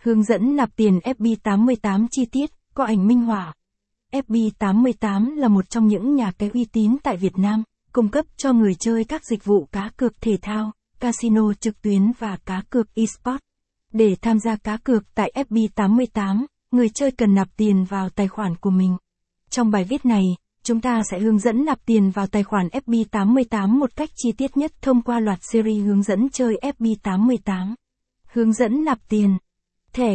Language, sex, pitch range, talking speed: Vietnamese, female, 200-245 Hz, 185 wpm